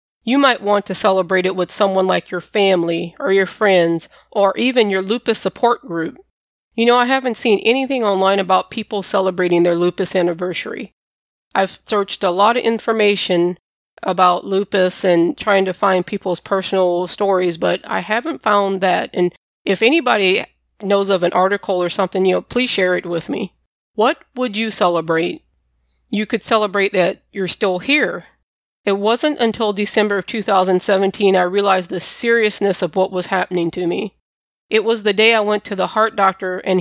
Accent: American